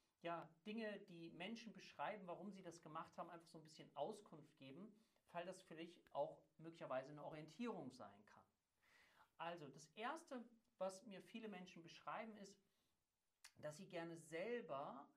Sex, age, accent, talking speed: male, 50-69, German, 155 wpm